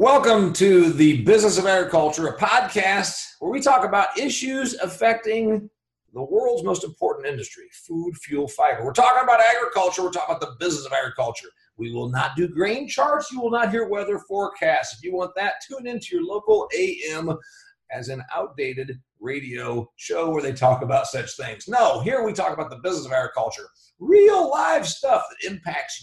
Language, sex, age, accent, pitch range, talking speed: English, male, 40-59, American, 150-235 Hz, 180 wpm